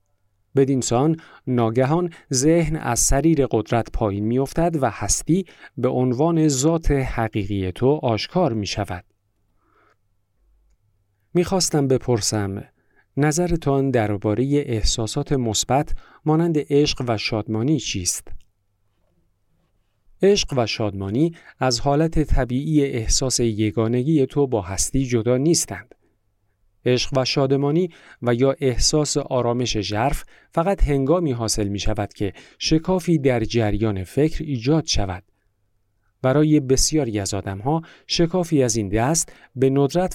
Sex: male